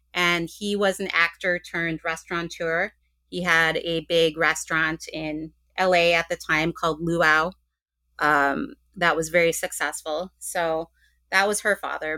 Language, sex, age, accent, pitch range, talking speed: English, female, 30-49, American, 155-195 Hz, 145 wpm